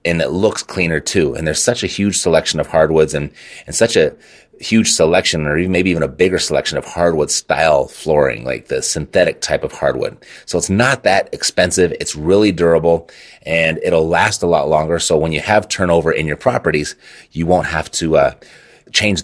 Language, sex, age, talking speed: English, male, 30-49, 200 wpm